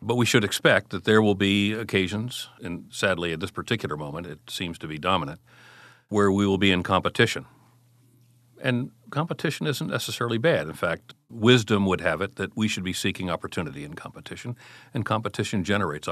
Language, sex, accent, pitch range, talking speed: English, male, American, 90-120 Hz, 180 wpm